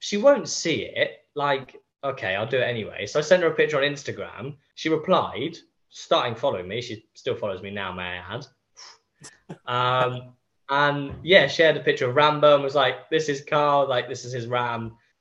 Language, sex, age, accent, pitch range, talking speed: English, male, 10-29, British, 105-125 Hz, 195 wpm